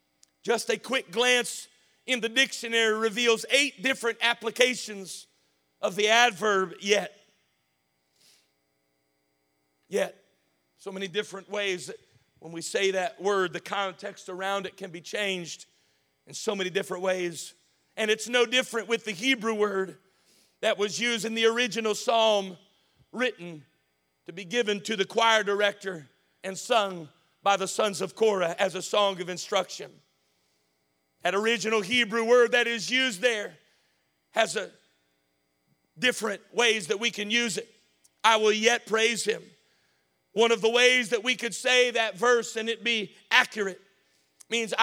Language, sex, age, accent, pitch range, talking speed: English, male, 50-69, American, 190-235 Hz, 145 wpm